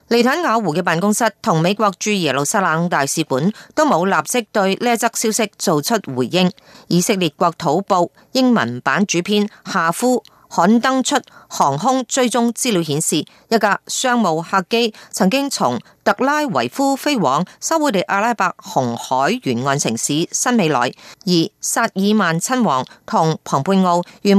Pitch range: 160-230 Hz